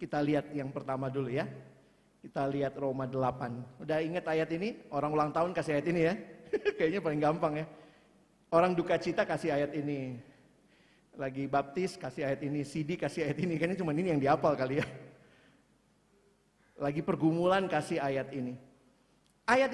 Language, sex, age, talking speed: Indonesian, male, 50-69, 160 wpm